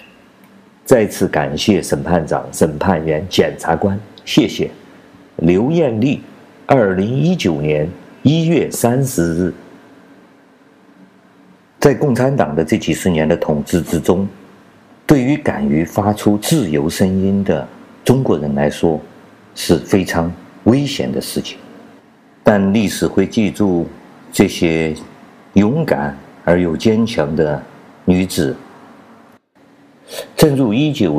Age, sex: 50-69, male